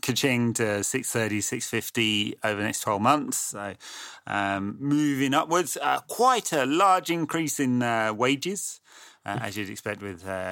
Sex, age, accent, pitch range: male, 30-49, British, 100-125 Hz